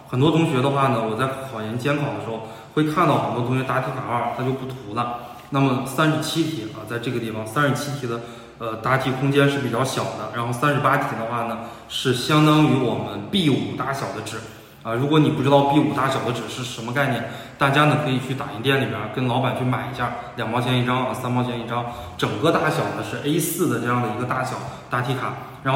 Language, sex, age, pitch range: Chinese, male, 20-39, 115-145 Hz